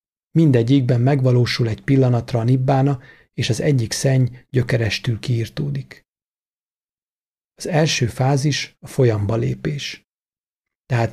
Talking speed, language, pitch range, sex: 100 wpm, Hungarian, 115-135 Hz, male